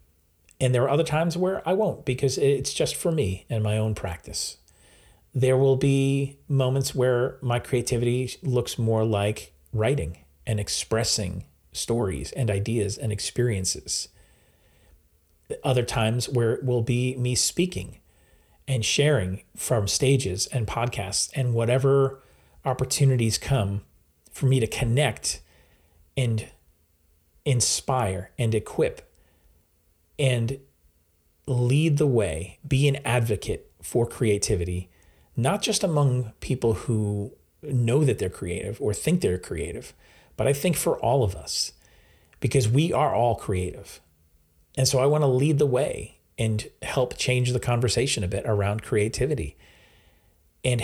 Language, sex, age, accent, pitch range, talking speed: English, male, 40-59, American, 90-130 Hz, 130 wpm